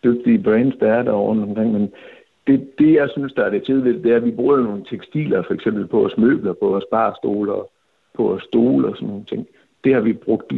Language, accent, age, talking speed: Danish, native, 60-79, 240 wpm